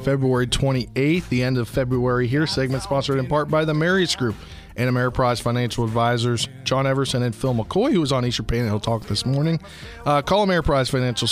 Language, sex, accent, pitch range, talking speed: English, male, American, 110-140 Hz, 200 wpm